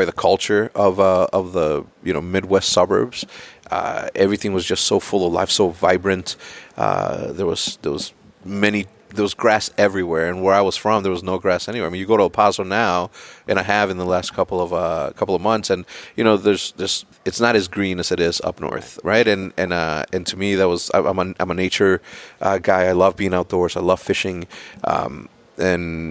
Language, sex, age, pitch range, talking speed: English, male, 30-49, 90-100 Hz, 225 wpm